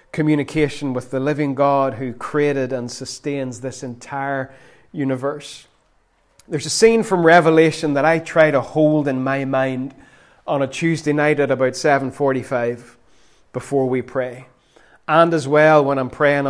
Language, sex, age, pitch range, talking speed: English, male, 30-49, 140-170 Hz, 155 wpm